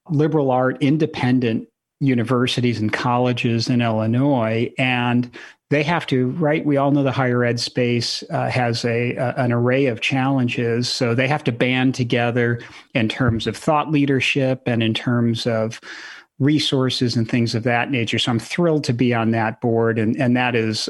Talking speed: 175 wpm